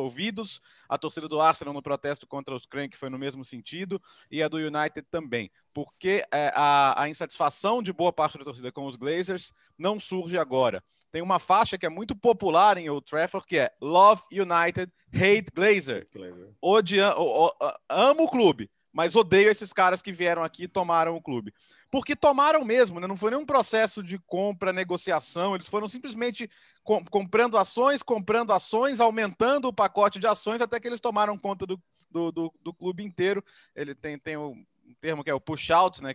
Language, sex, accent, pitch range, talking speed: Portuguese, male, Brazilian, 155-210 Hz, 180 wpm